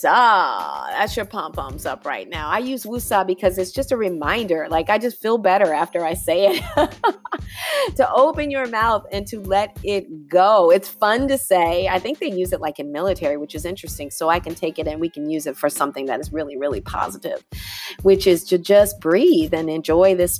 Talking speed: 220 wpm